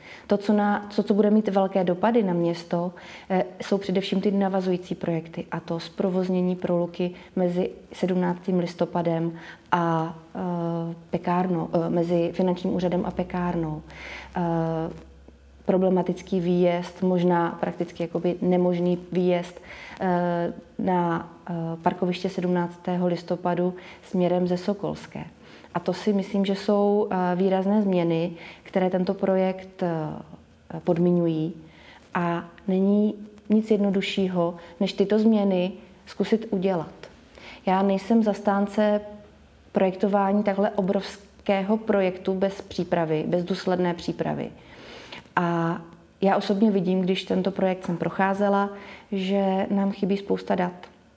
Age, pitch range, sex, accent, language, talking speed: 20-39, 175-195 Hz, female, native, Czech, 105 wpm